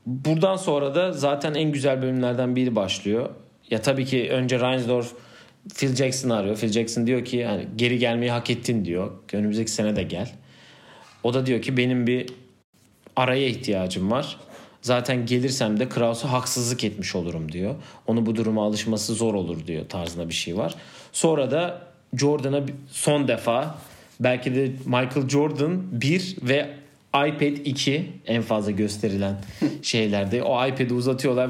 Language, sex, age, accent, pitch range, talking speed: Turkish, male, 40-59, native, 110-140 Hz, 150 wpm